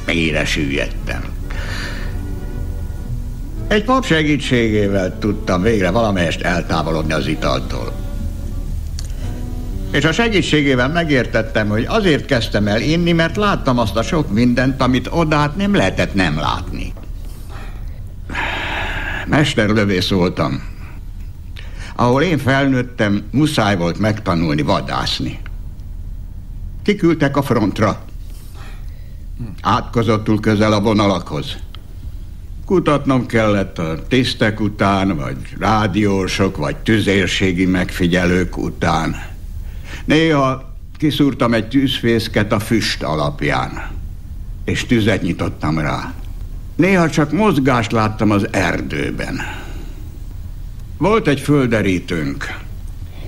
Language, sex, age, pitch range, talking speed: Hungarian, male, 60-79, 90-120 Hz, 90 wpm